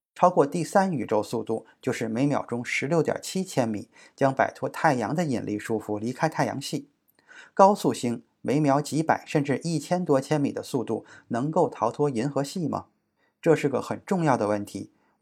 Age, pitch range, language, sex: 20-39, 120-170 Hz, Chinese, male